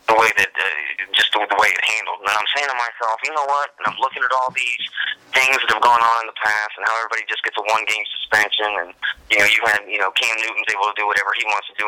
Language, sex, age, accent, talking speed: English, male, 30-49, American, 285 wpm